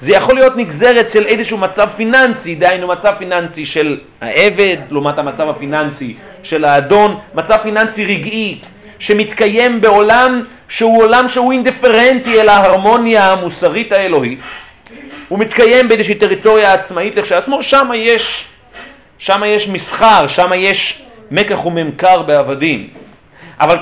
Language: Hebrew